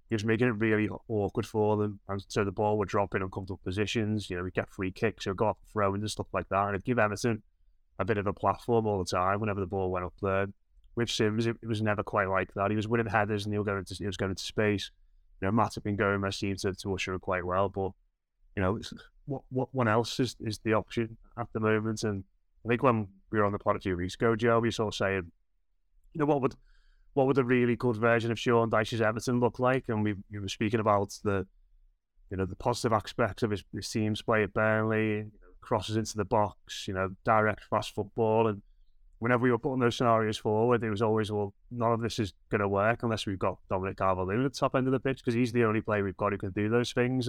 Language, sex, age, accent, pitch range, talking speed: English, male, 20-39, British, 95-115 Hz, 265 wpm